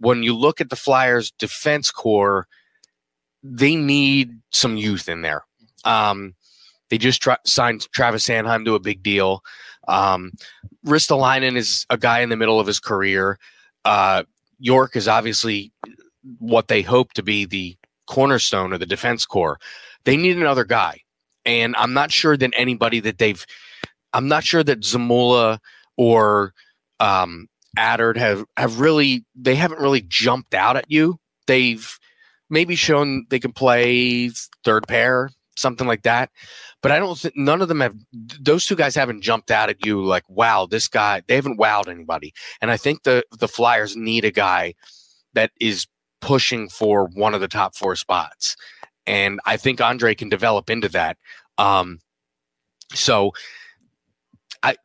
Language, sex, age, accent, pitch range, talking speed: English, male, 30-49, American, 105-130 Hz, 160 wpm